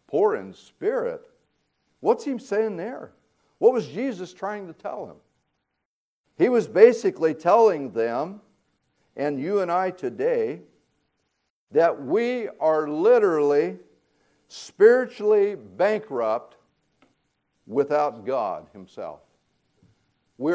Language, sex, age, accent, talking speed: English, male, 60-79, American, 100 wpm